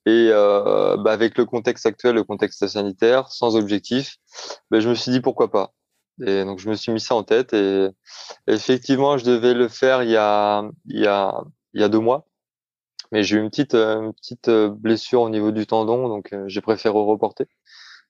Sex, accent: male, French